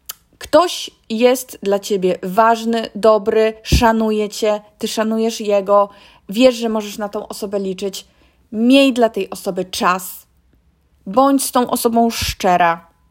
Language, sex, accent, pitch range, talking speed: Polish, female, native, 200-260 Hz, 130 wpm